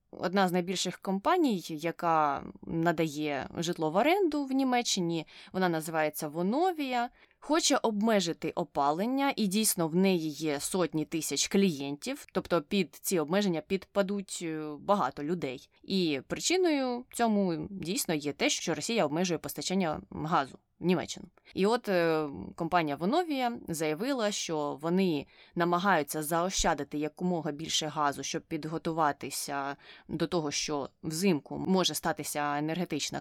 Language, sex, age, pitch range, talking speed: Ukrainian, female, 20-39, 155-205 Hz, 115 wpm